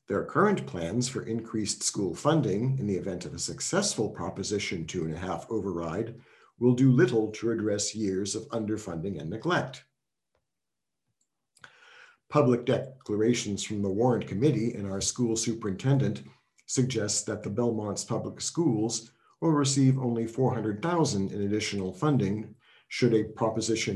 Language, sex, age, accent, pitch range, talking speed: English, male, 50-69, American, 105-130 Hz, 130 wpm